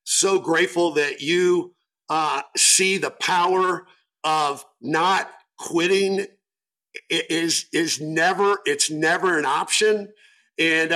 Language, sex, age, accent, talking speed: English, male, 50-69, American, 110 wpm